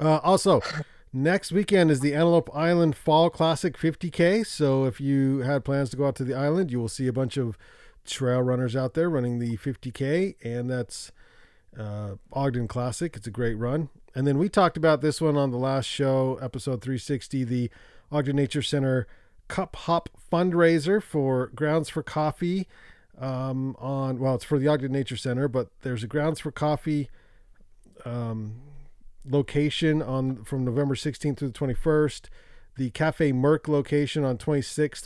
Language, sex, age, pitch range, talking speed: English, male, 40-59, 125-150 Hz, 170 wpm